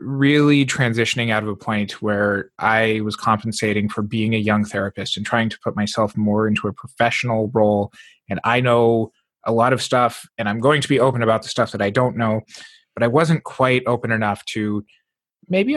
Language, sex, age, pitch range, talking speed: English, male, 20-39, 110-135 Hz, 200 wpm